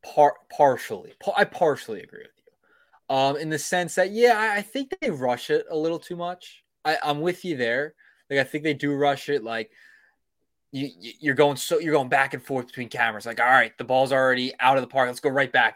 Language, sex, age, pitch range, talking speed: English, male, 20-39, 135-200 Hz, 230 wpm